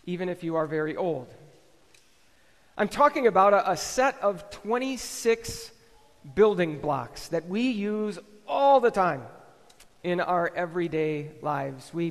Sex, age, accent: male, 40-59, American